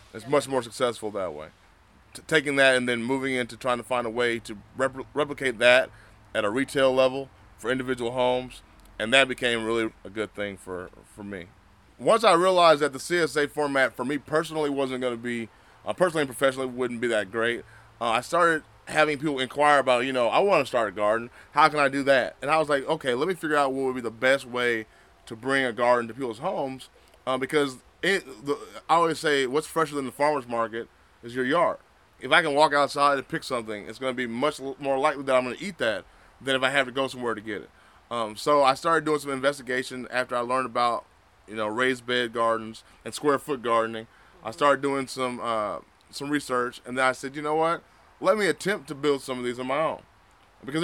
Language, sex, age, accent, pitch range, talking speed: English, male, 20-39, American, 115-145 Hz, 225 wpm